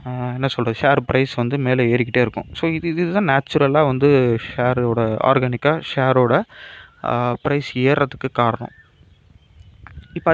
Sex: male